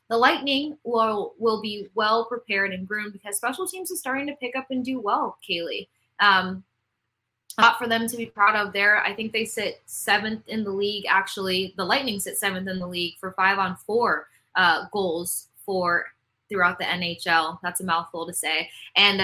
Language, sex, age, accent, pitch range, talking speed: English, female, 10-29, American, 175-210 Hz, 190 wpm